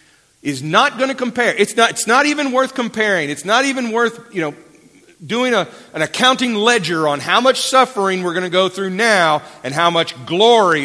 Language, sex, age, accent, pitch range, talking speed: English, male, 40-59, American, 135-215 Hz, 205 wpm